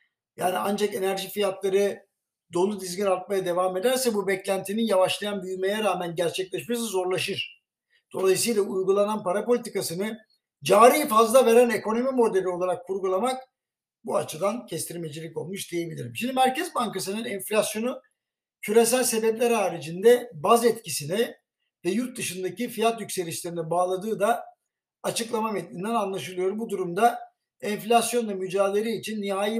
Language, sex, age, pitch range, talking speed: Turkish, male, 60-79, 185-230 Hz, 115 wpm